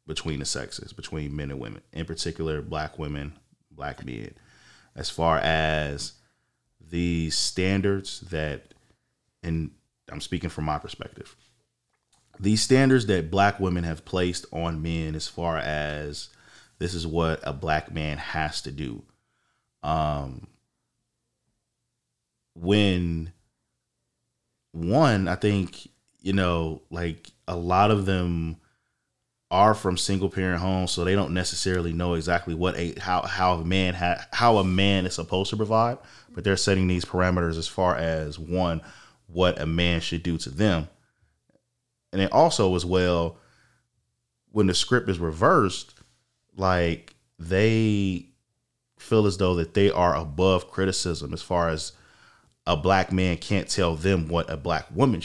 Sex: male